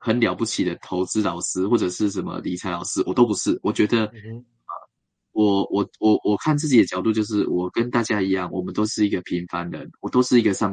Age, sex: 20-39, male